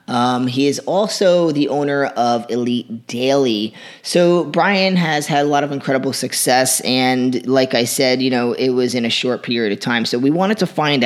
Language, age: English, 20-39